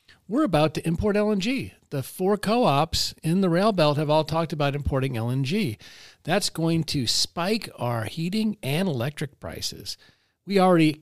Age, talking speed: 40-59, 160 wpm